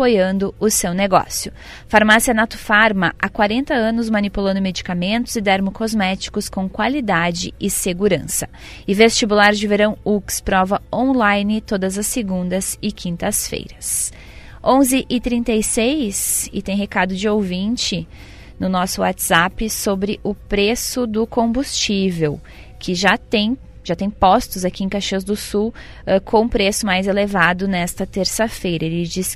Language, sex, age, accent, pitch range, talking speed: Portuguese, female, 20-39, Brazilian, 185-215 Hz, 125 wpm